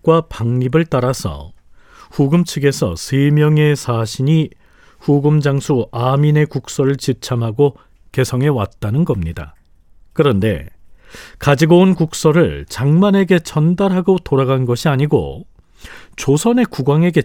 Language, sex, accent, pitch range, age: Korean, male, native, 115-160 Hz, 40-59